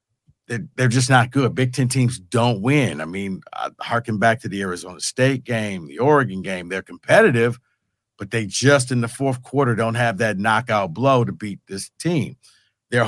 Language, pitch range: English, 115-135 Hz